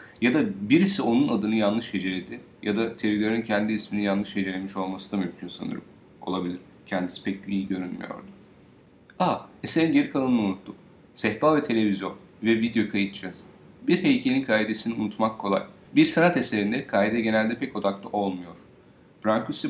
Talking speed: 145 wpm